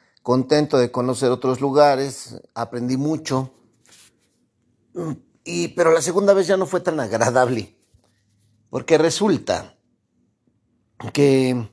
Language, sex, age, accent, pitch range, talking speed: Spanish, male, 50-69, Mexican, 115-155 Hz, 100 wpm